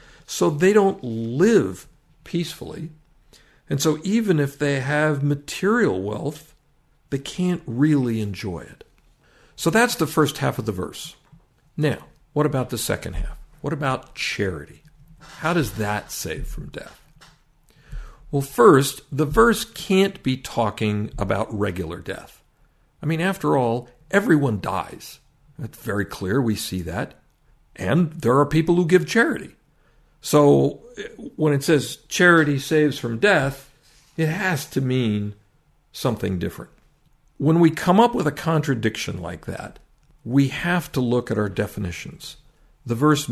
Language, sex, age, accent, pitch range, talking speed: English, male, 60-79, American, 120-160 Hz, 140 wpm